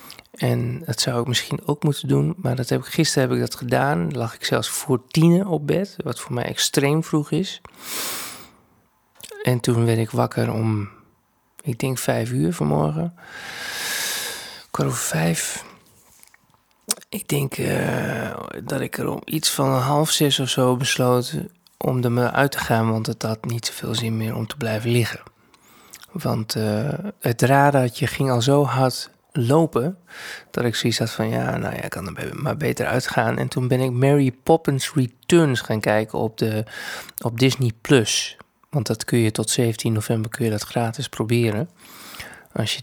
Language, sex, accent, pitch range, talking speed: Dutch, male, Dutch, 115-145 Hz, 180 wpm